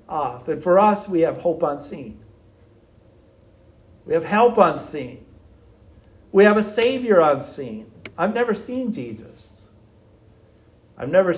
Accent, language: American, English